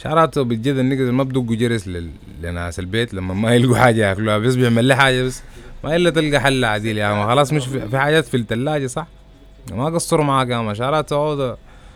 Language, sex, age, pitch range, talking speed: English, male, 20-39, 110-140 Hz, 215 wpm